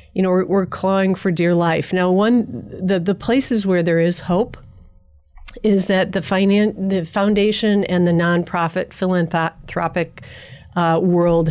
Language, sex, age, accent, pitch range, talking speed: English, female, 40-59, American, 160-190 Hz, 150 wpm